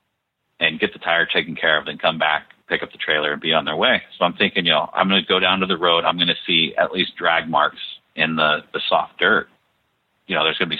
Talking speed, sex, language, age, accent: 285 wpm, male, English, 40-59, American